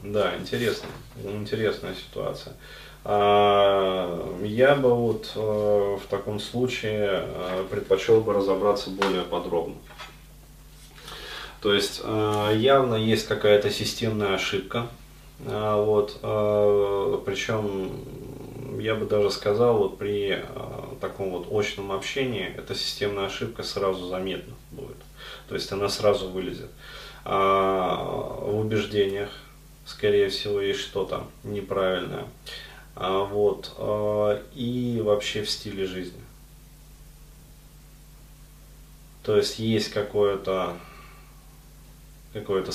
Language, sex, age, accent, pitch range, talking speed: Russian, male, 20-39, native, 100-135 Hz, 90 wpm